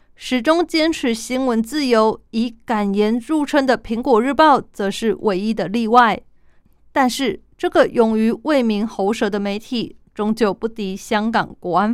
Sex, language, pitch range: female, Chinese, 210-265 Hz